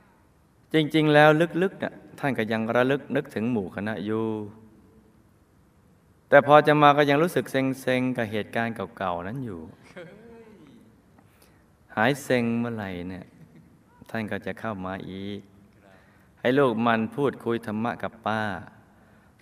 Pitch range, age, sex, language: 100-130 Hz, 20-39, male, Thai